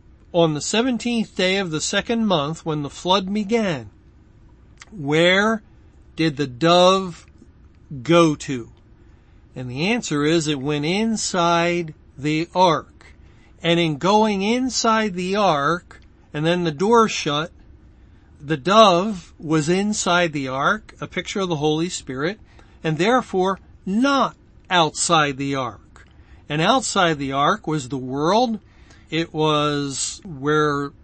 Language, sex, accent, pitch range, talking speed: English, male, American, 145-190 Hz, 130 wpm